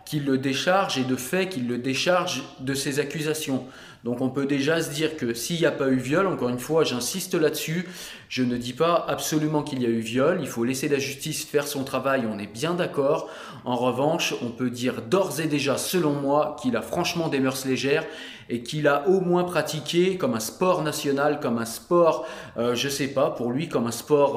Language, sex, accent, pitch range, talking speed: French, male, French, 125-155 Hz, 225 wpm